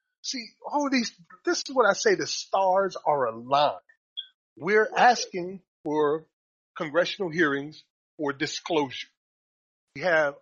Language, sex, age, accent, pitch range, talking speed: English, male, 40-59, American, 170-250 Hz, 120 wpm